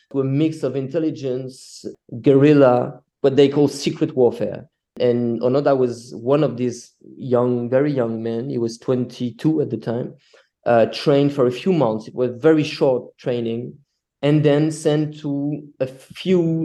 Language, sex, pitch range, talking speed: English, male, 120-140 Hz, 160 wpm